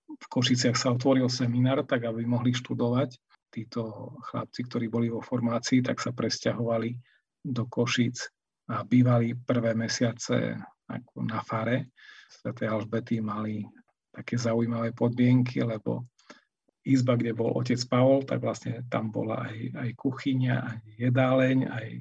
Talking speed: 135 wpm